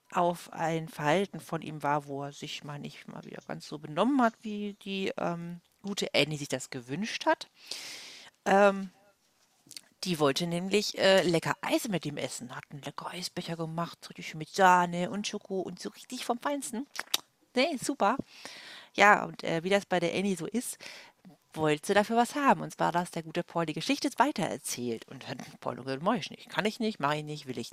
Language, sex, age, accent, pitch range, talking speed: German, female, 40-59, German, 150-200 Hz, 200 wpm